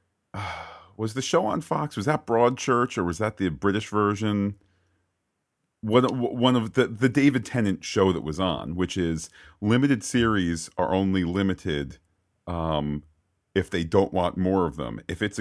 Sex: male